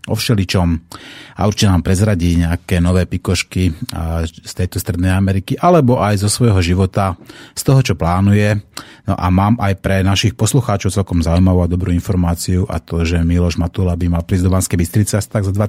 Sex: male